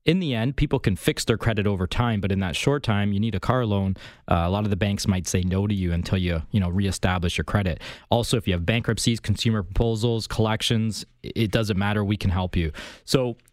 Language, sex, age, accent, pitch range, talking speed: English, male, 20-39, American, 95-125 Hz, 240 wpm